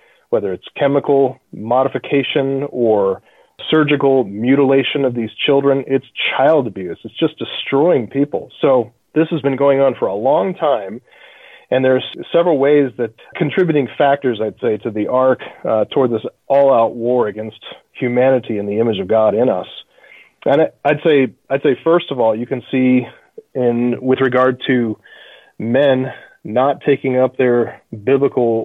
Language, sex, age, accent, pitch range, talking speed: English, male, 30-49, American, 120-145 Hz, 155 wpm